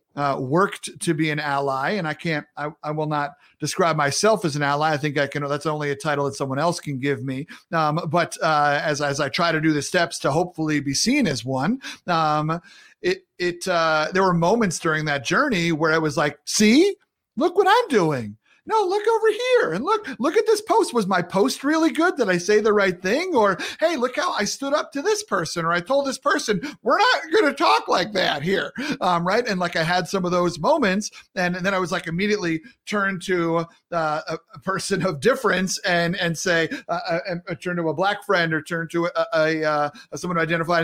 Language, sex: English, male